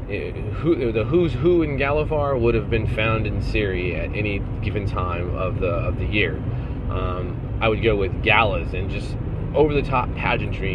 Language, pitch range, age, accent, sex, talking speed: English, 100-120 Hz, 30-49, American, male, 185 wpm